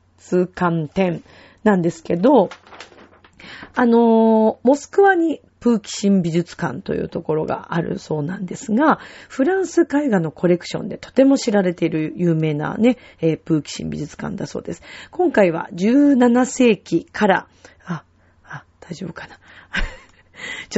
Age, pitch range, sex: 40-59, 165-235 Hz, female